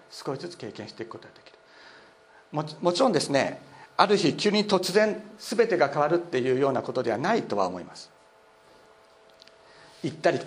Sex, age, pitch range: male, 50-69, 125-170 Hz